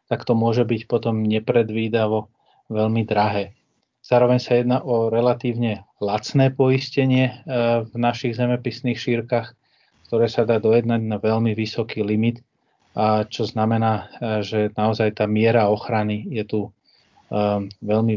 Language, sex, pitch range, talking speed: Slovak, male, 105-120 Hz, 125 wpm